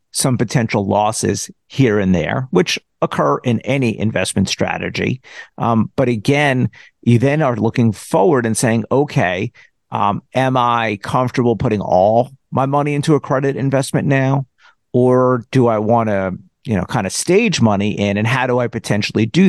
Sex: male